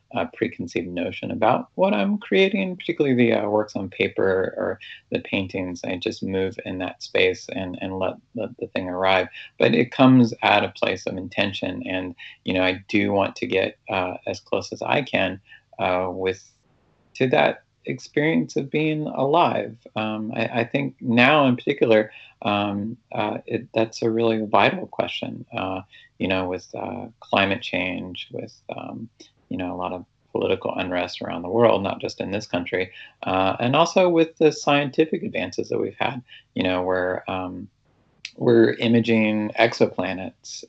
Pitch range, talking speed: 95-120 Hz, 170 wpm